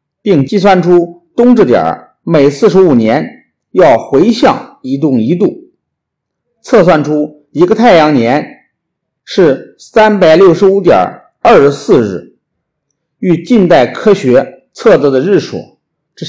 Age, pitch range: 50-69, 130-195 Hz